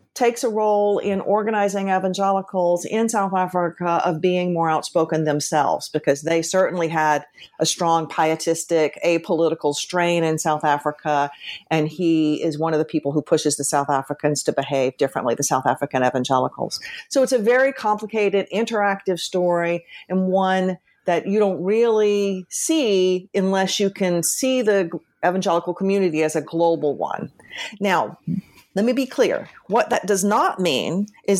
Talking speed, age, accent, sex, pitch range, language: 155 wpm, 50-69, American, female, 160-195 Hz, English